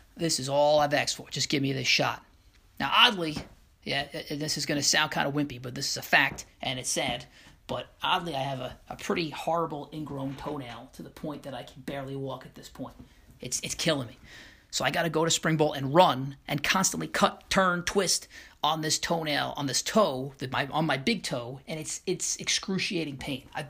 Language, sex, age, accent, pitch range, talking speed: English, male, 30-49, American, 135-170 Hz, 225 wpm